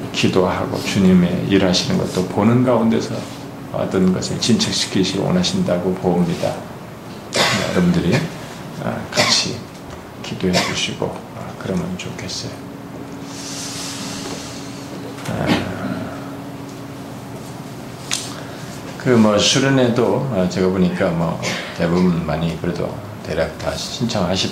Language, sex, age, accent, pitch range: Korean, male, 40-59, native, 85-110 Hz